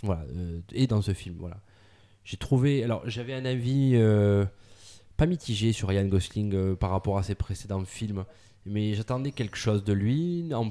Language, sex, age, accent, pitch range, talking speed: French, male, 20-39, French, 95-120 Hz, 185 wpm